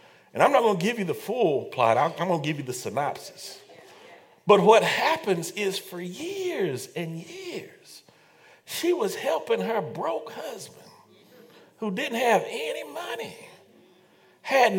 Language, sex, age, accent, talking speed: English, male, 50-69, American, 155 wpm